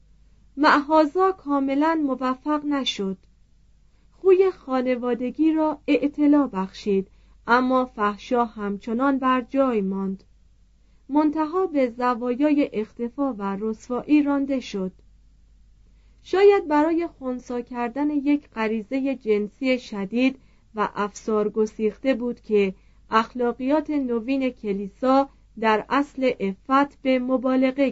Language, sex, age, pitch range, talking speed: Persian, female, 40-59, 210-275 Hz, 90 wpm